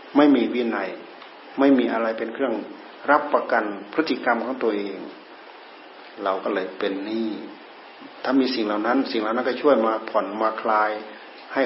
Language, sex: Thai, male